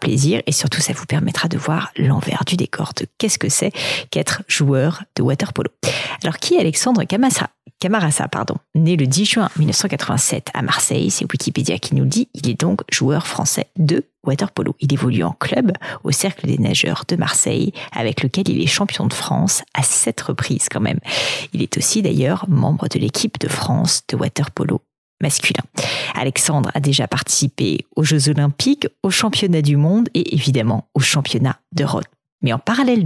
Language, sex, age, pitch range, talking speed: French, female, 40-59, 140-175 Hz, 180 wpm